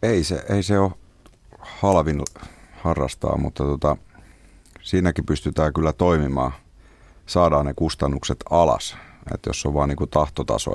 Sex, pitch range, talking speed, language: male, 70-85 Hz, 130 wpm, Finnish